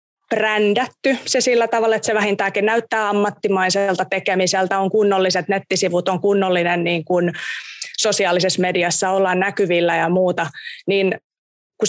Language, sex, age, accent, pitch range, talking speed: Finnish, female, 20-39, native, 185-240 Hz, 125 wpm